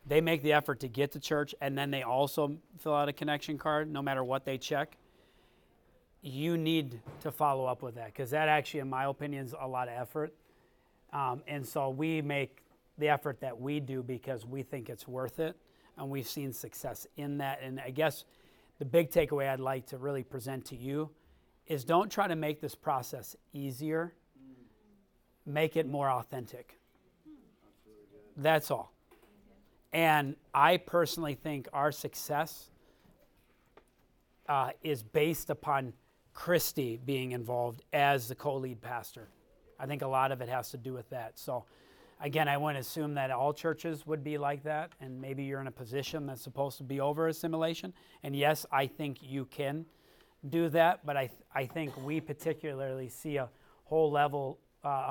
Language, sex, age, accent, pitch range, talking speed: English, male, 30-49, American, 130-155 Hz, 175 wpm